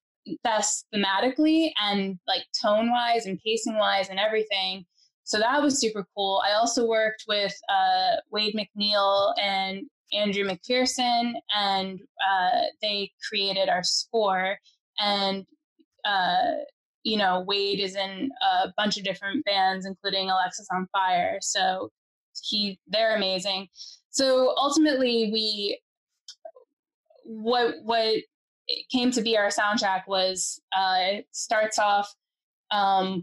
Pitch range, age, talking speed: 190-235 Hz, 10-29, 125 wpm